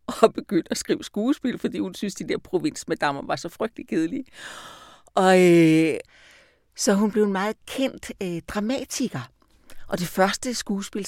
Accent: native